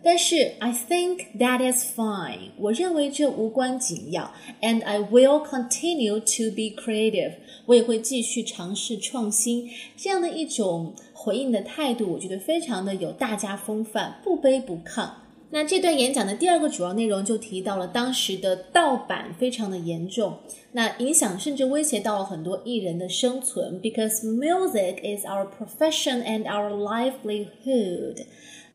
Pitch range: 205-270 Hz